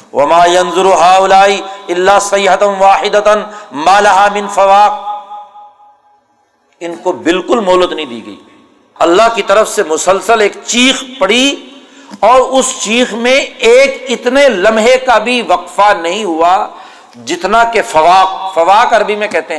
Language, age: Urdu, 60-79